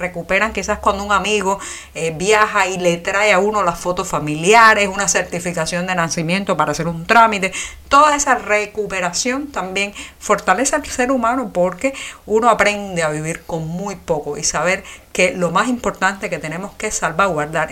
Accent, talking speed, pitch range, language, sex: American, 165 wpm, 170-220 Hz, Spanish, female